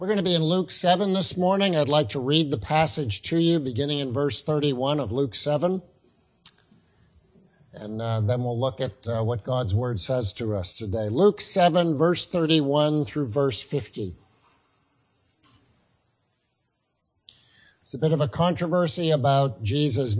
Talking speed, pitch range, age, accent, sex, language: 155 wpm, 130-175 Hz, 50-69, American, male, English